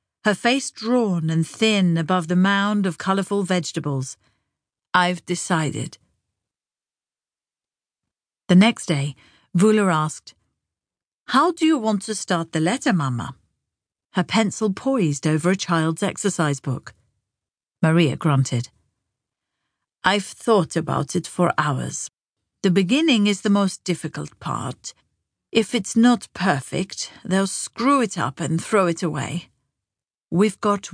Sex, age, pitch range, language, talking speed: female, 50-69, 155-210 Hz, English, 125 wpm